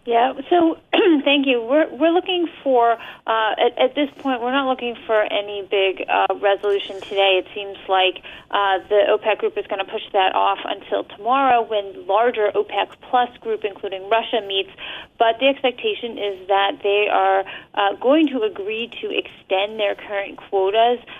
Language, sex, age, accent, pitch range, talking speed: English, female, 30-49, American, 200-240 Hz, 175 wpm